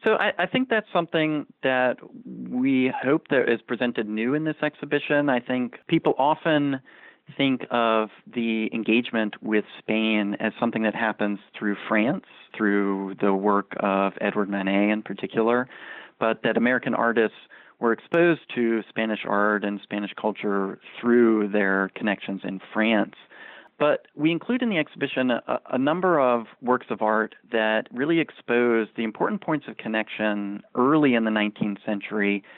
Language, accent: English, American